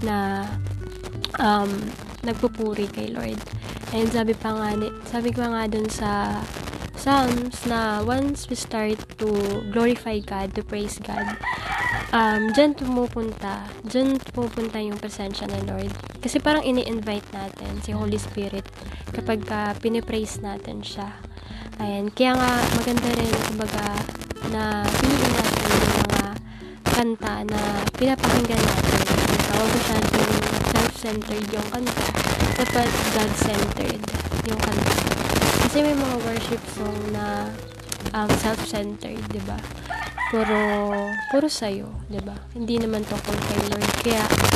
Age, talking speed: 20-39, 125 wpm